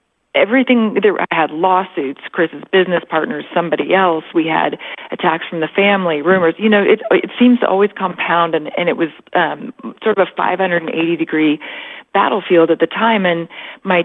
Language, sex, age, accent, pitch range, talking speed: English, female, 40-59, American, 160-200 Hz, 170 wpm